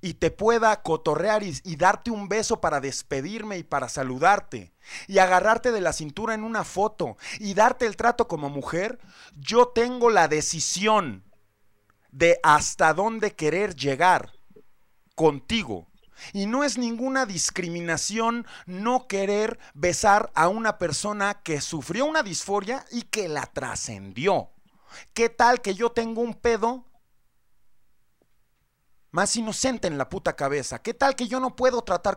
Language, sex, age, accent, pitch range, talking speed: Spanish, male, 40-59, Mexican, 165-235 Hz, 145 wpm